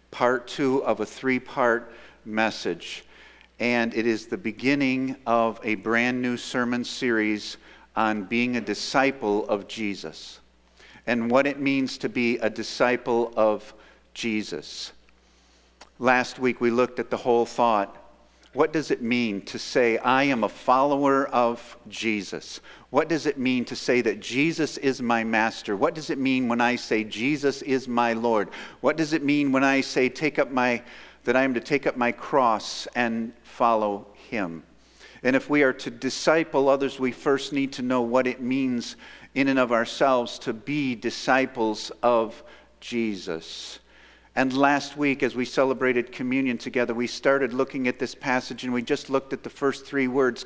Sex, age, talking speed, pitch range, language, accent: male, 50-69, 170 wpm, 115-135 Hz, English, American